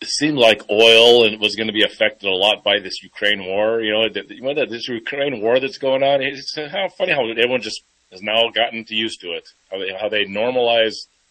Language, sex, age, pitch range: English, male, 30-49, 100-125 Hz